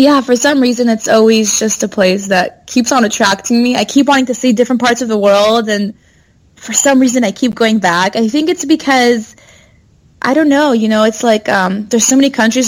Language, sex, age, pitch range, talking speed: English, female, 20-39, 195-235 Hz, 225 wpm